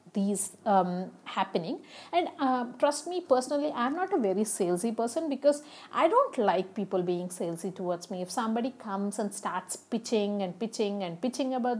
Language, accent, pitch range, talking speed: English, Indian, 190-260 Hz, 175 wpm